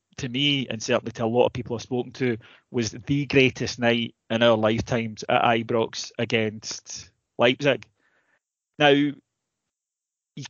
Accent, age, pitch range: British, 20-39, 115-135 Hz